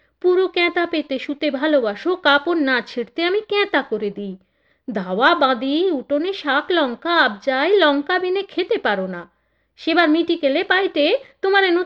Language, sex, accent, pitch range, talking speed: Bengali, female, native, 245-360 Hz, 70 wpm